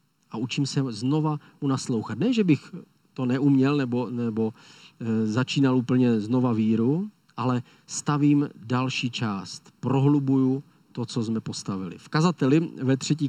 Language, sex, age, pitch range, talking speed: Czech, male, 40-59, 130-155 Hz, 135 wpm